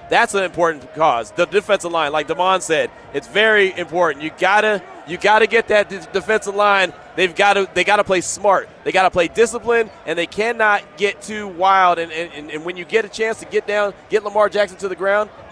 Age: 30-49